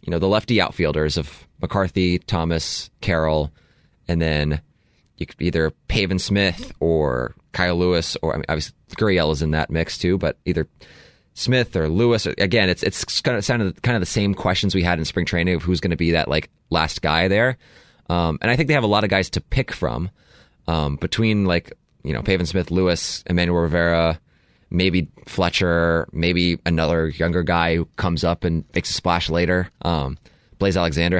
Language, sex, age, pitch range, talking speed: English, male, 20-39, 80-95 Hz, 190 wpm